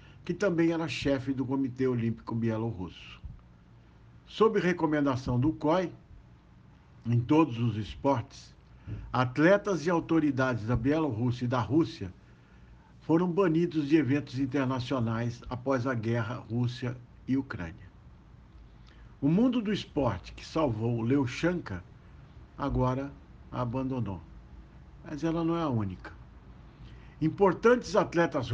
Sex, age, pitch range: male, 60-79, 115-165 Hz